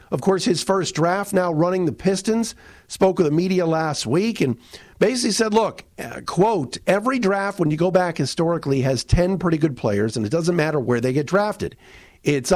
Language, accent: English, American